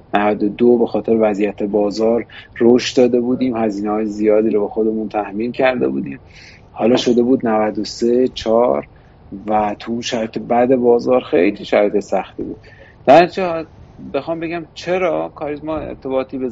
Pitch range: 110-140 Hz